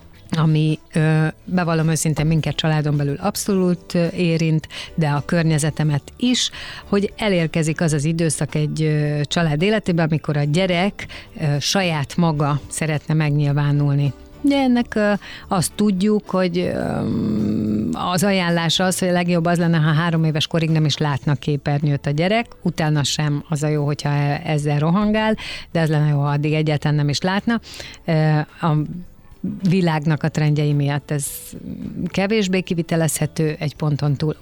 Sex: female